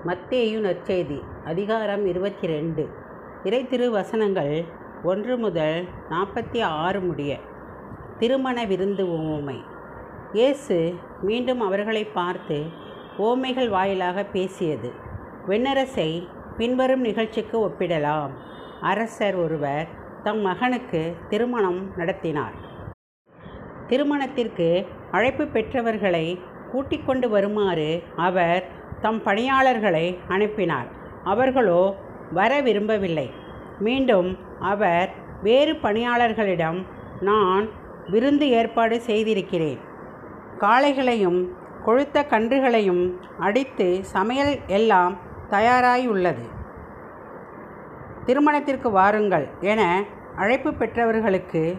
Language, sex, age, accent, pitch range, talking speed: Tamil, female, 50-69, native, 180-235 Hz, 75 wpm